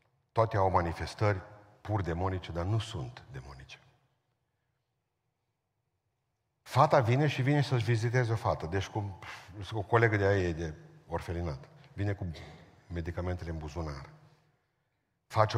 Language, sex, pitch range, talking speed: Romanian, male, 85-120 Hz, 125 wpm